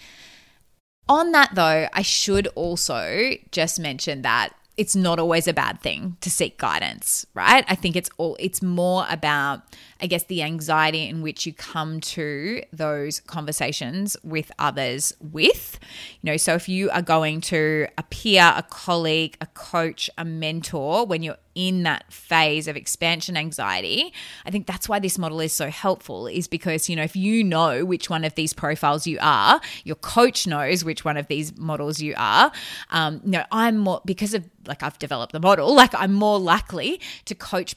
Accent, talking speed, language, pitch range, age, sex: Australian, 180 wpm, English, 155-185 Hz, 20-39, female